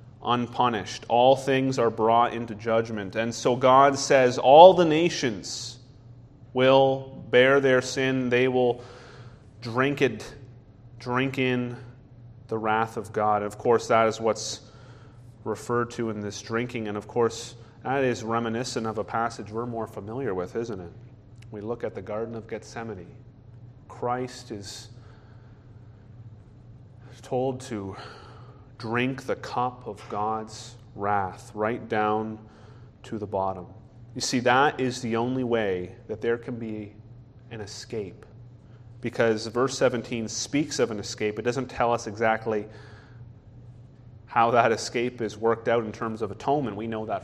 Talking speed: 145 wpm